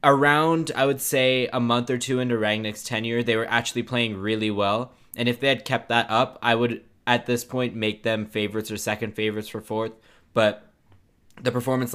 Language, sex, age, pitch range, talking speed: English, male, 10-29, 100-120 Hz, 200 wpm